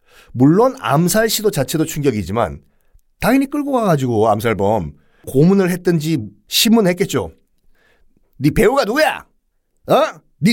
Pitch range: 130-210 Hz